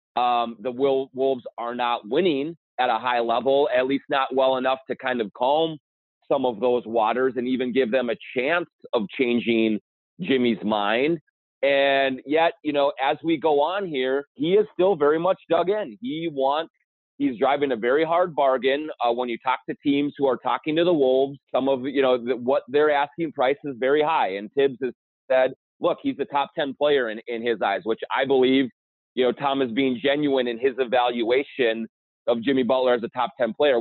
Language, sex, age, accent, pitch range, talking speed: English, male, 30-49, American, 125-145 Hz, 205 wpm